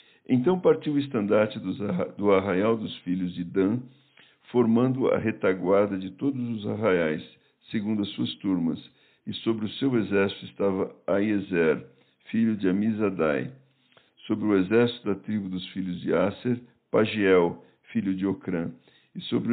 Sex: male